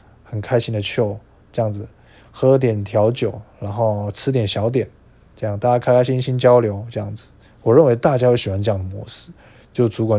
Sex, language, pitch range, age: male, Chinese, 105-135 Hz, 20-39